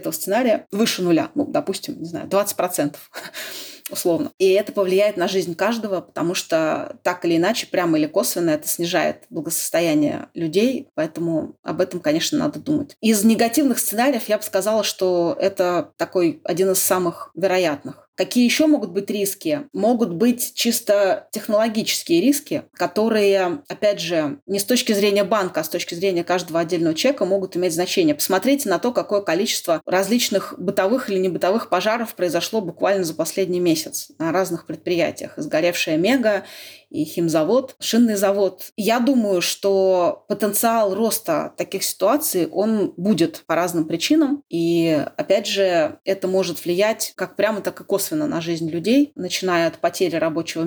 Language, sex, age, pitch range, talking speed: Russian, female, 30-49, 180-275 Hz, 155 wpm